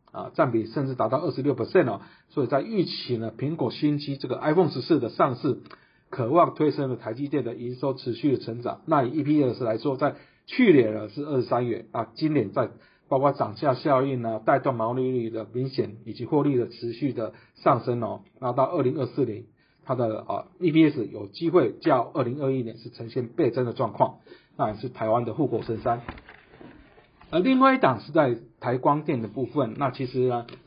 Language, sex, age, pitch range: Chinese, male, 50-69, 120-155 Hz